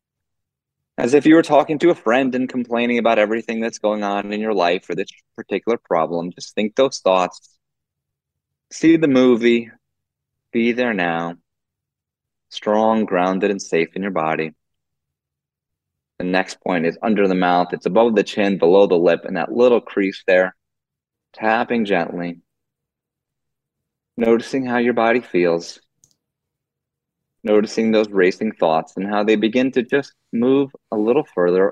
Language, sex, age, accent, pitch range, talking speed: English, male, 30-49, American, 95-120 Hz, 150 wpm